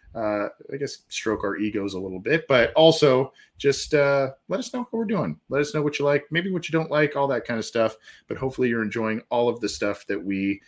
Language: English